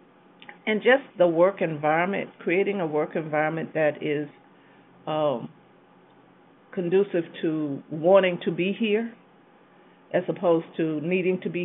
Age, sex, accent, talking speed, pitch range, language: 50-69, female, American, 125 wpm, 160-185 Hz, English